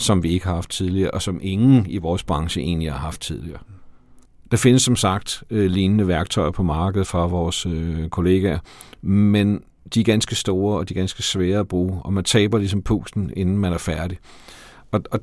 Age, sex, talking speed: 50-69, male, 195 wpm